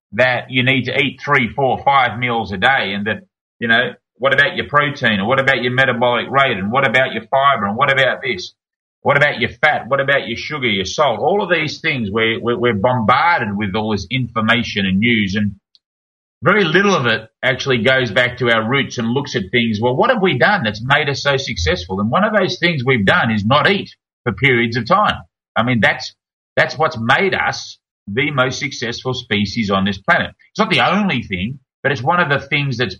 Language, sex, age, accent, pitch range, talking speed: English, male, 30-49, Australian, 115-145 Hz, 220 wpm